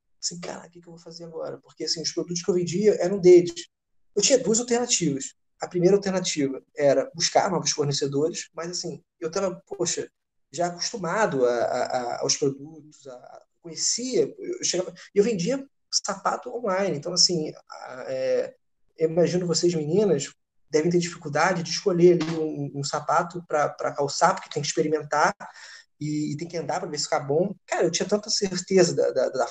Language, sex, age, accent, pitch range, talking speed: Portuguese, male, 20-39, Brazilian, 150-195 Hz, 180 wpm